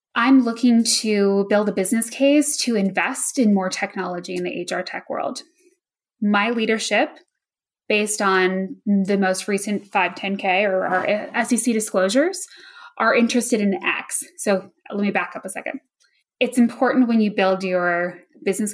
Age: 10-29